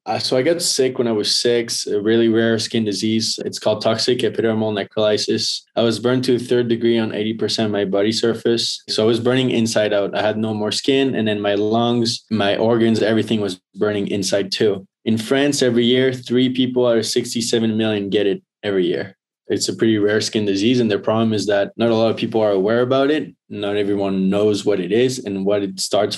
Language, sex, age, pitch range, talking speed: English, male, 20-39, 100-120 Hz, 225 wpm